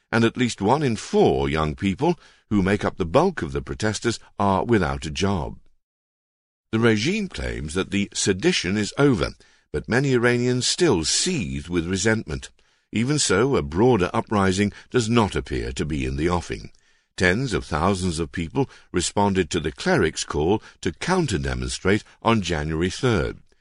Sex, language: male, Chinese